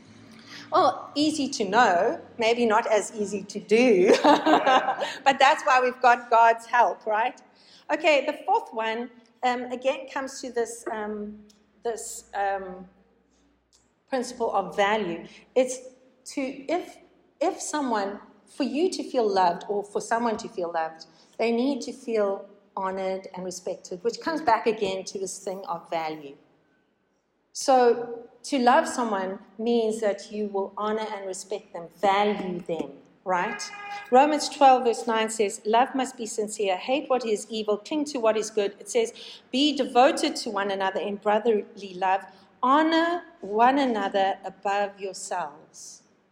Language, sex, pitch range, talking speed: English, female, 200-255 Hz, 145 wpm